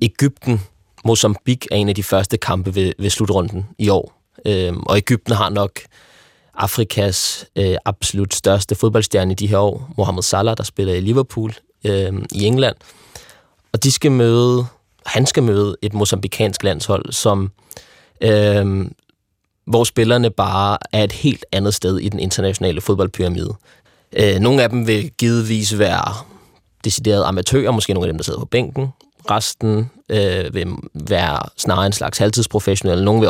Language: Danish